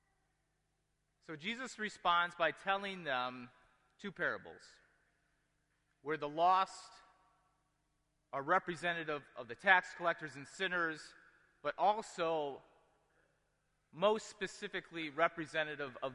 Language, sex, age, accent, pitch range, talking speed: English, male, 30-49, American, 135-165 Hz, 95 wpm